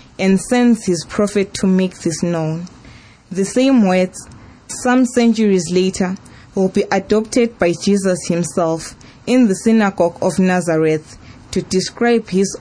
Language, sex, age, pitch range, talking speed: English, female, 20-39, 170-210 Hz, 135 wpm